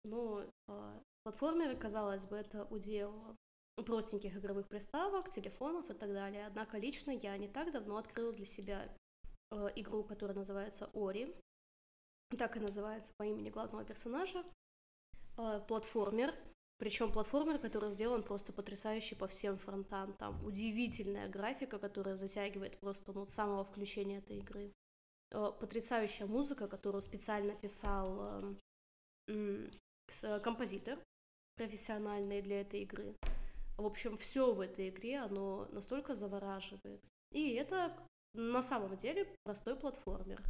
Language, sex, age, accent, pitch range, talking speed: Russian, female, 20-39, native, 200-240 Hz, 120 wpm